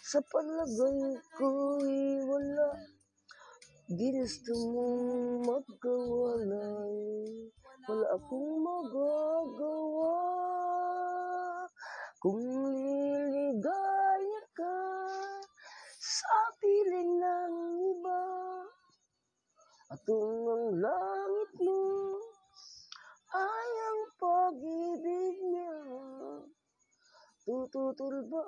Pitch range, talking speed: 250-360 Hz, 55 wpm